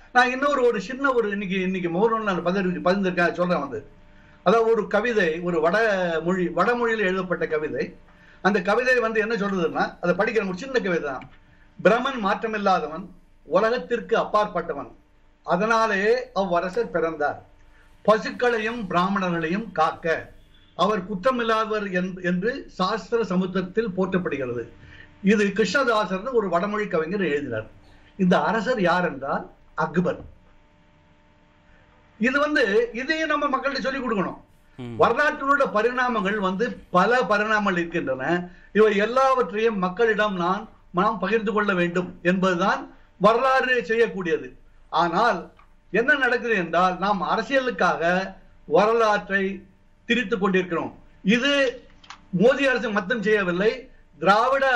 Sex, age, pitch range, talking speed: male, 60-79, 175-230 Hz, 95 wpm